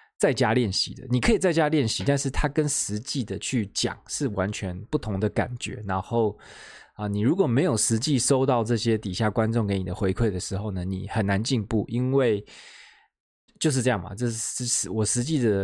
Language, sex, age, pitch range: Chinese, male, 20-39, 100-125 Hz